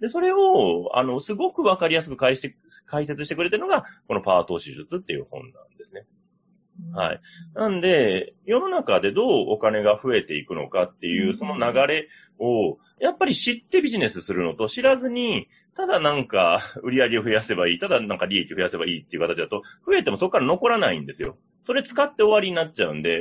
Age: 30-49